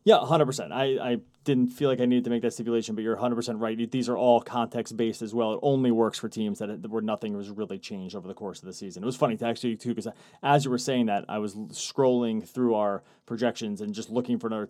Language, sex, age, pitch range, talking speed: English, male, 30-49, 115-135 Hz, 275 wpm